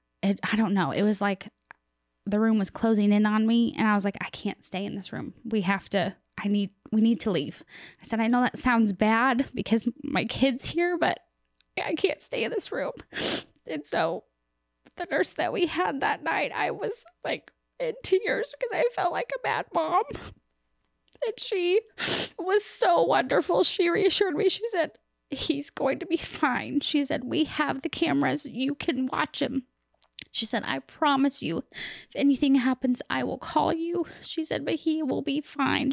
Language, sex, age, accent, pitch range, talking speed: English, female, 10-29, American, 230-320 Hz, 190 wpm